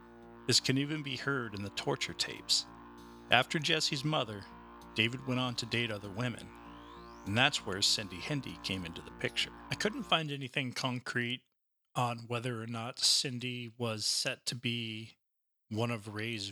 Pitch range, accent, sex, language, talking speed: 110-135 Hz, American, male, English, 165 wpm